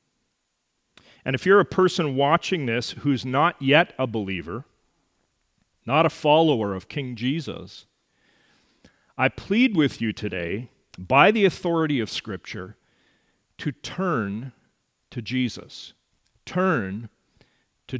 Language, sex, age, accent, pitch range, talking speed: English, male, 40-59, American, 115-170 Hz, 115 wpm